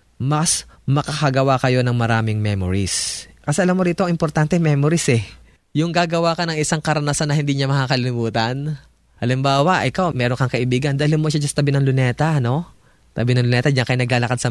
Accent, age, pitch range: native, 20-39, 135-170 Hz